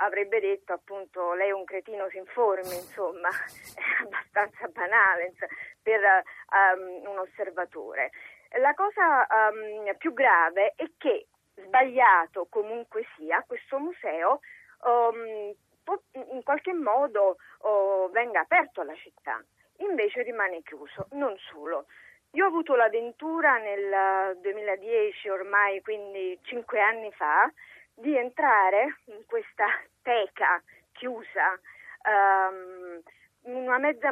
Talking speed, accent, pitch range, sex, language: 115 wpm, native, 190-270 Hz, female, Italian